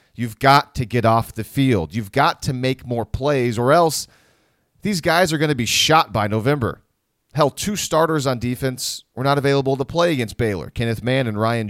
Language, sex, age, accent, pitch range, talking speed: English, male, 30-49, American, 110-145 Hz, 205 wpm